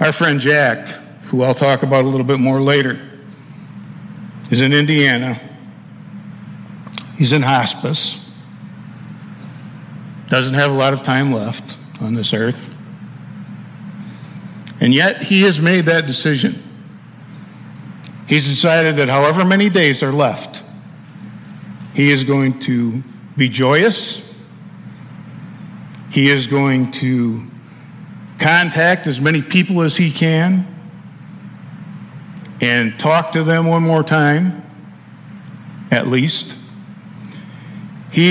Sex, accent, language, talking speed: male, American, English, 110 wpm